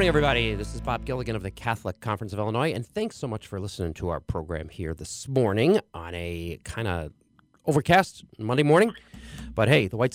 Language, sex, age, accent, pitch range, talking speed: English, male, 30-49, American, 95-135 Hz, 215 wpm